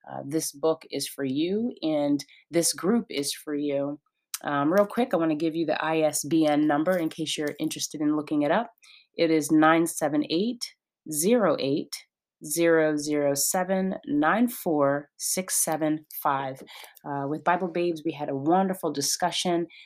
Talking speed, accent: 130 wpm, American